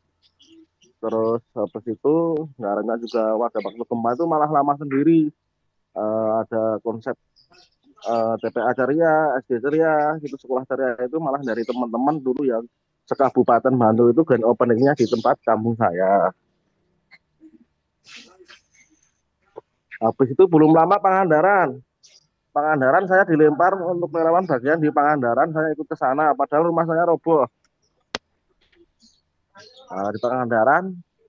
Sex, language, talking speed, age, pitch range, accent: male, Indonesian, 115 wpm, 20-39, 125-165 Hz, native